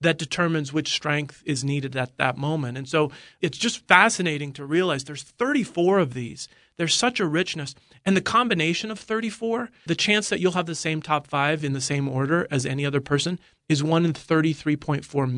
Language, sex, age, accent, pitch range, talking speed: English, male, 40-59, American, 140-170 Hz, 195 wpm